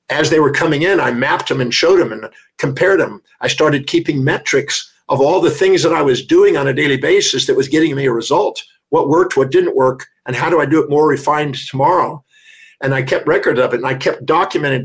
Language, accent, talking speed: English, American, 245 wpm